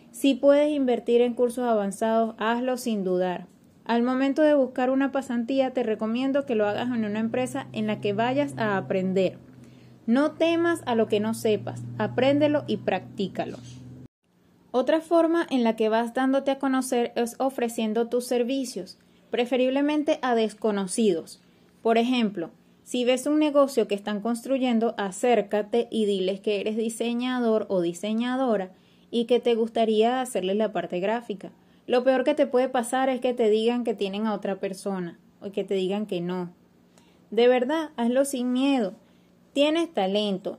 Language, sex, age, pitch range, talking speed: Spanish, female, 20-39, 205-255 Hz, 160 wpm